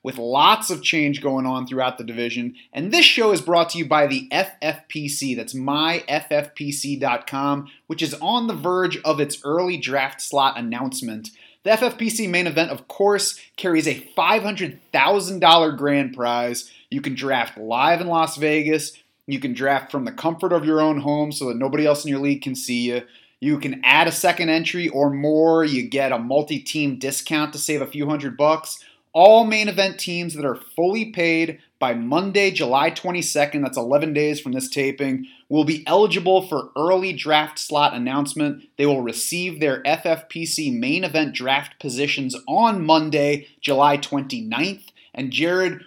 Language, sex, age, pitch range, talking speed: English, male, 30-49, 140-175 Hz, 170 wpm